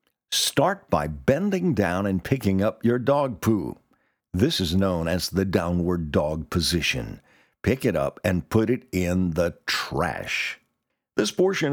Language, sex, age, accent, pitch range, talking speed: English, male, 50-69, American, 85-125 Hz, 150 wpm